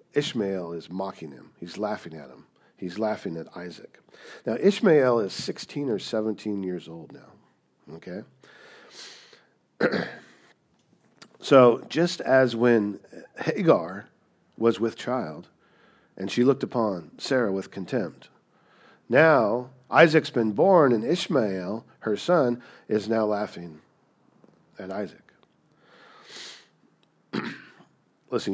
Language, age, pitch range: English, 50-69, 95-130 Hz